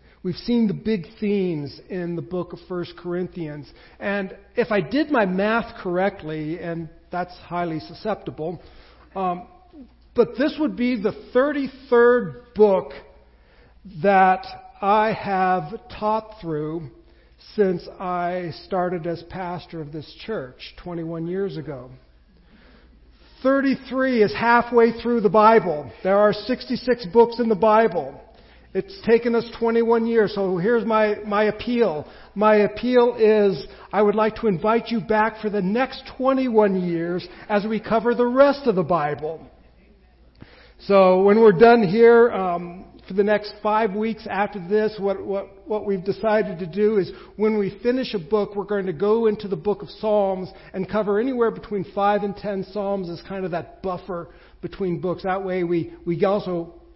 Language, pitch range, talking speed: English, 180-220 Hz, 155 wpm